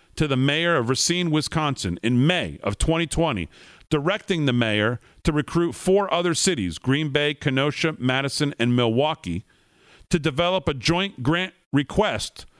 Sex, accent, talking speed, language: male, American, 145 wpm, English